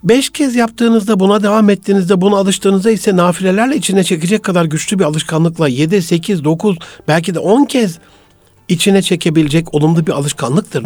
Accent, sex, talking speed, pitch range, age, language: native, male, 155 wpm, 145-195 Hz, 60-79, Turkish